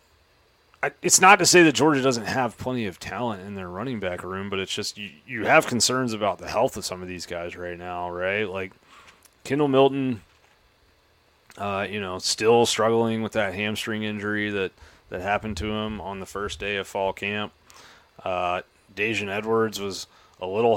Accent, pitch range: American, 100-125 Hz